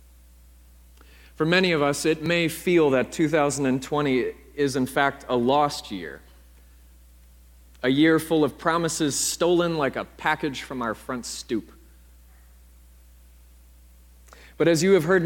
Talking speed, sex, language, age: 130 wpm, male, English, 30-49